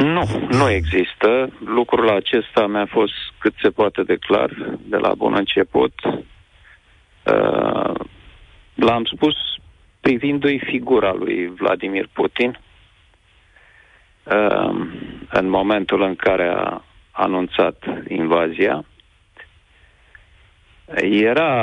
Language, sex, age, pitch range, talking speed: Romanian, male, 40-59, 95-125 Hz, 85 wpm